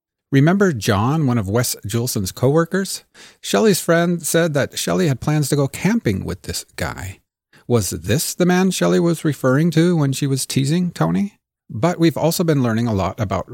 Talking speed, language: 185 wpm, English